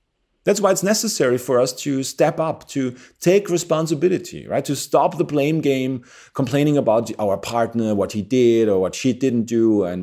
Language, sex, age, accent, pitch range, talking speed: English, male, 30-49, German, 100-135 Hz, 185 wpm